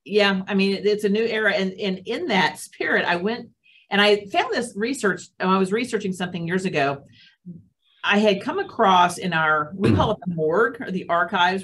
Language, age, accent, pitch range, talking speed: English, 50-69, American, 165-215 Hz, 205 wpm